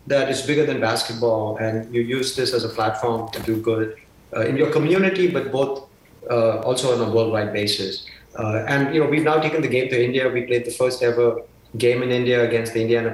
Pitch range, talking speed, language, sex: 115-135 Hz, 225 wpm, English, male